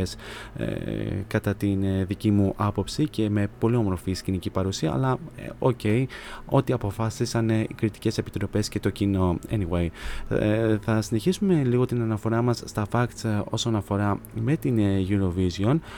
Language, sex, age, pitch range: Greek, male, 20-39, 100-120 Hz